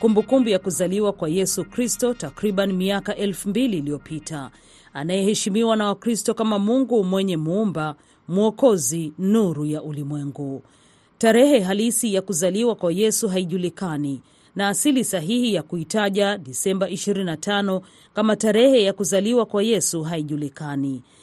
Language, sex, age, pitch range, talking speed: Swahili, female, 40-59, 170-220 Hz, 120 wpm